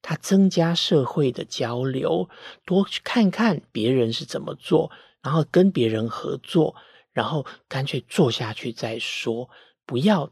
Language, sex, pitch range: Chinese, male, 125-180 Hz